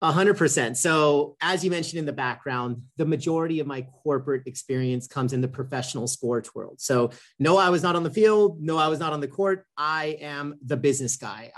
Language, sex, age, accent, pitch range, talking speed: English, male, 40-59, American, 135-165 Hz, 200 wpm